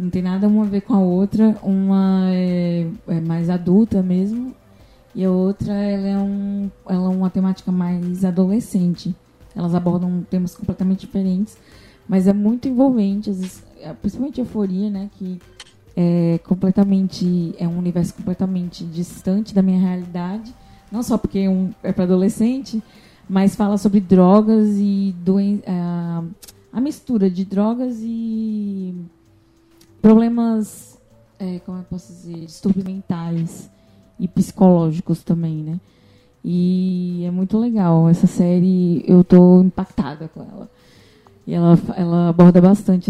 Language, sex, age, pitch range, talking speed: Portuguese, female, 20-39, 175-205 Hz, 135 wpm